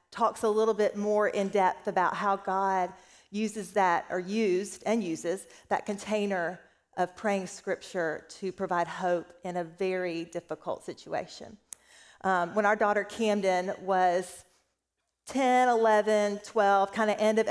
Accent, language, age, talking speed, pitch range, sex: American, English, 40-59, 145 wpm, 185-220 Hz, female